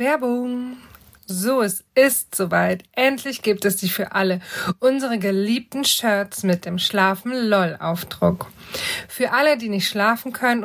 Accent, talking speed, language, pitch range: German, 130 wpm, German, 195-245 Hz